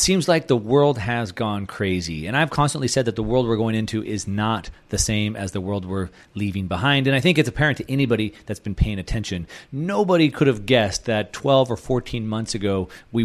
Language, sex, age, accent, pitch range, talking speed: English, male, 30-49, American, 105-130 Hz, 220 wpm